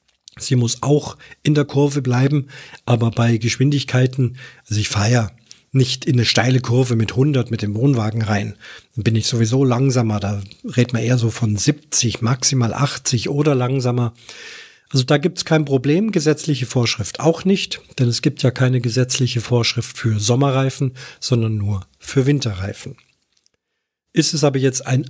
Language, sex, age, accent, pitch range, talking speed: German, male, 40-59, German, 120-145 Hz, 165 wpm